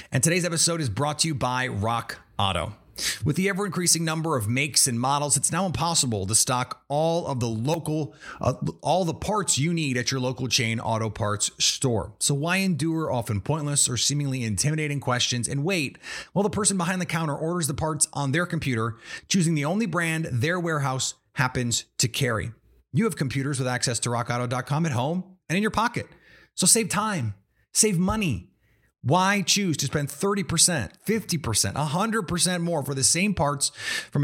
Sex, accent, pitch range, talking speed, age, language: male, American, 120-170 Hz, 180 wpm, 30-49, English